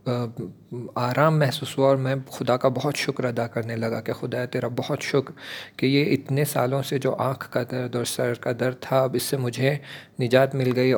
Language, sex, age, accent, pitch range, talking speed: English, male, 40-59, Indian, 120-145 Hz, 190 wpm